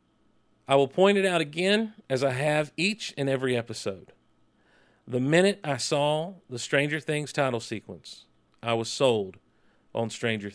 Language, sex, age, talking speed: English, male, 40-59, 155 wpm